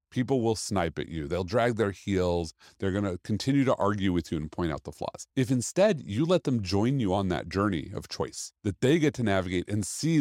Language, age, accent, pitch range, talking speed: English, 40-59, American, 95-125 Hz, 235 wpm